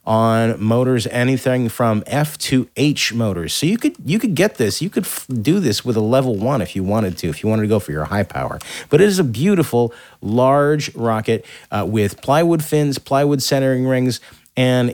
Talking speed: 210 wpm